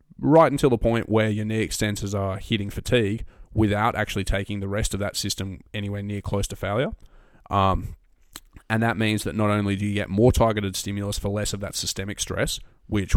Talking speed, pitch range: 200 wpm, 95-105 Hz